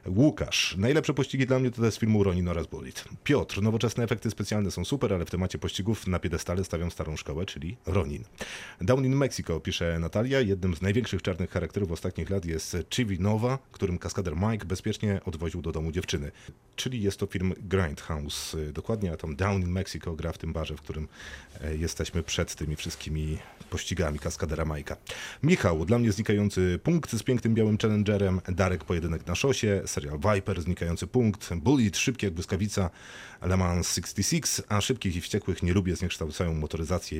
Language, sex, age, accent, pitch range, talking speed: Polish, male, 40-59, native, 85-110 Hz, 175 wpm